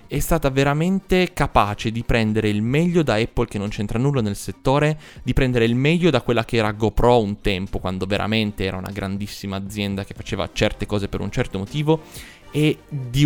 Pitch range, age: 100-130 Hz, 20-39